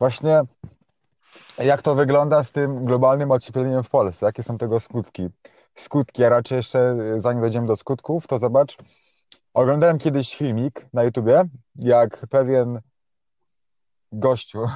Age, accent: 30-49, native